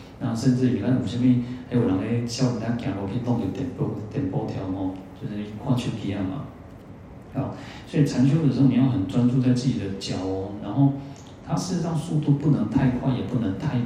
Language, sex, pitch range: Chinese, male, 105-135 Hz